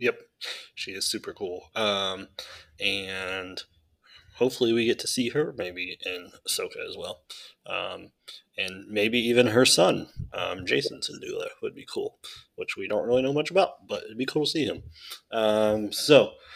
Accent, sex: American, male